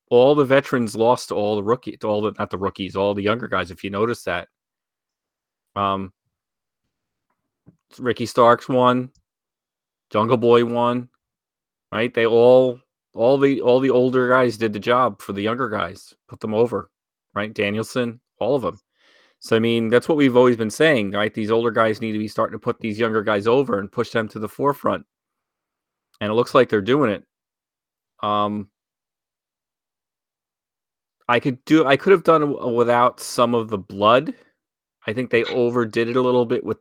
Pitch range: 105-125 Hz